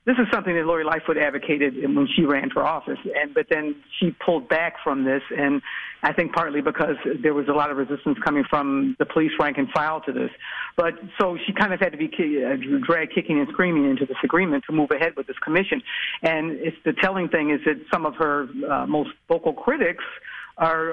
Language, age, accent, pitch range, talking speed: English, 50-69, American, 145-170 Hz, 220 wpm